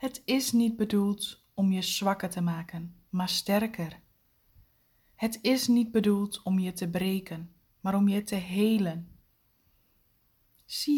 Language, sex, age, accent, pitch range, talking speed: Dutch, female, 20-39, Dutch, 185-230 Hz, 135 wpm